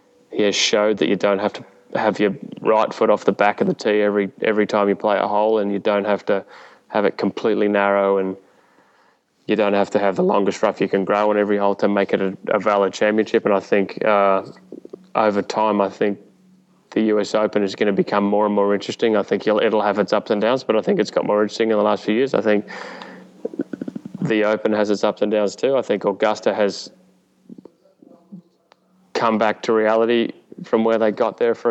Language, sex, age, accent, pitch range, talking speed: English, male, 20-39, Australian, 100-115 Hz, 225 wpm